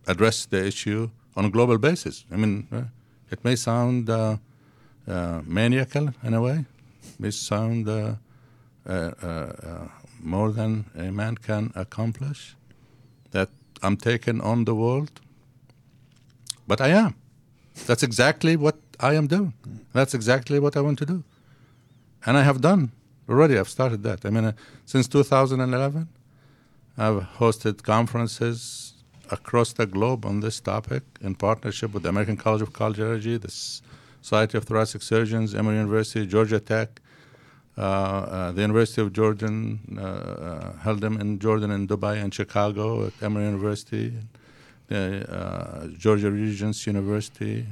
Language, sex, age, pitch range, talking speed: English, male, 60-79, 105-130 Hz, 150 wpm